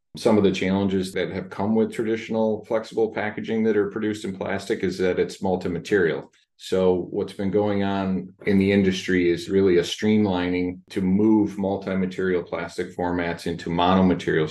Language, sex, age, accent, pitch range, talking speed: English, male, 30-49, American, 85-100 Hz, 170 wpm